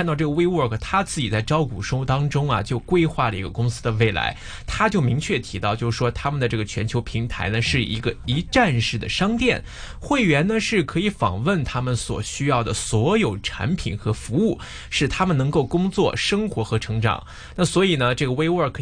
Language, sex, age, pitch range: Chinese, male, 20-39, 110-155 Hz